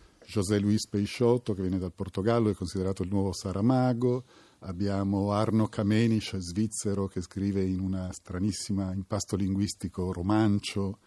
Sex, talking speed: male, 135 wpm